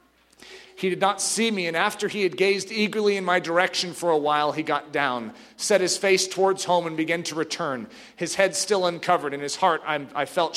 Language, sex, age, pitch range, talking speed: English, male, 40-59, 170-195 Hz, 215 wpm